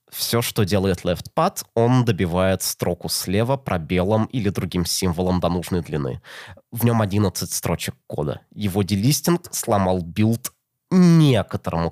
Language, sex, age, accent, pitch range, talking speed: Russian, male, 20-39, native, 95-135 Hz, 125 wpm